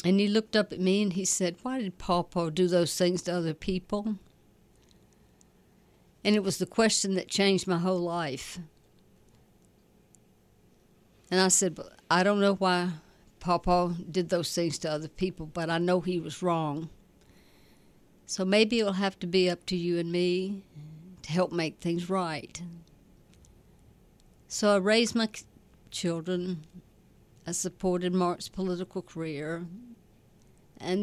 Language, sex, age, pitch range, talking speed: English, female, 60-79, 170-200 Hz, 145 wpm